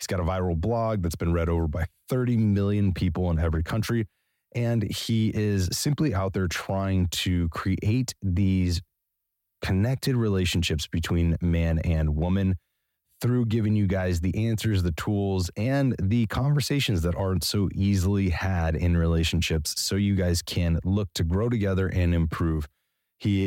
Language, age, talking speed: English, 30-49, 155 wpm